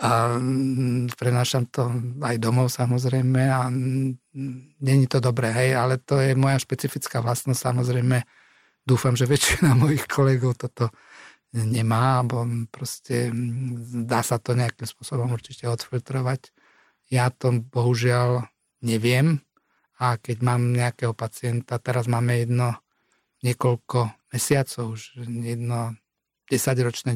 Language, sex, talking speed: Slovak, male, 110 wpm